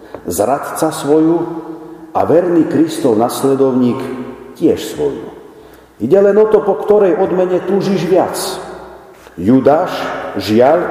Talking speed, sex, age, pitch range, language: 105 wpm, male, 50-69, 155-210 Hz, Slovak